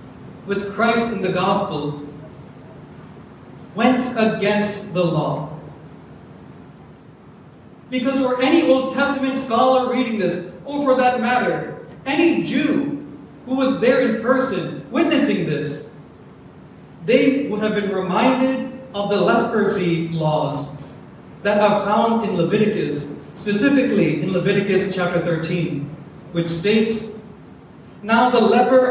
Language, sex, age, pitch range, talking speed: English, male, 40-59, 185-255 Hz, 110 wpm